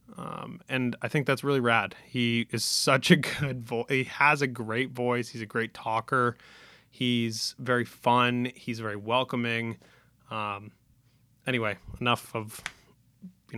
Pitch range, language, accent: 115-130 Hz, English, American